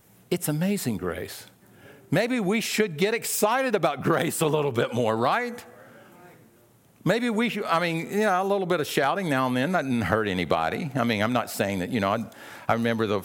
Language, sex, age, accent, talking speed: English, male, 50-69, American, 210 wpm